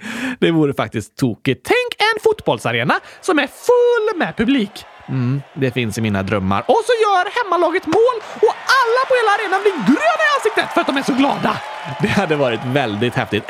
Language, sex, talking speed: Swedish, male, 190 wpm